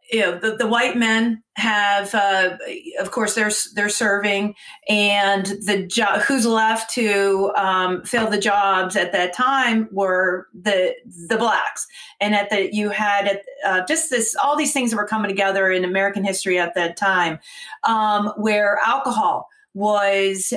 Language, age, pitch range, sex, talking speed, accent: English, 40-59, 195-225 Hz, female, 160 wpm, American